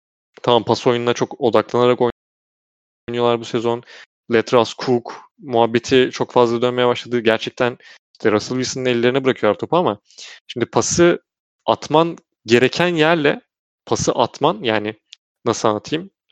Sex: male